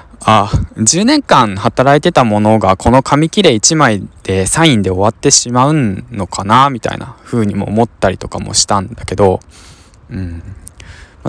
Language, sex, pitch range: Japanese, male, 95-120 Hz